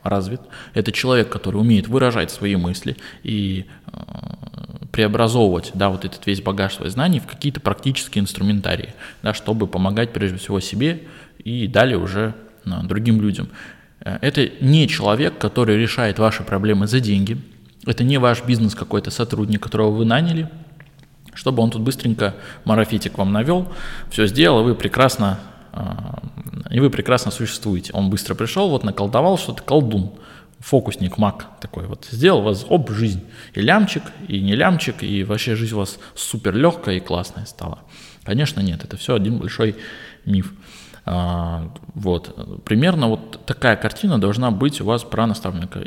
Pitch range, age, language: 100-130 Hz, 20-39, Russian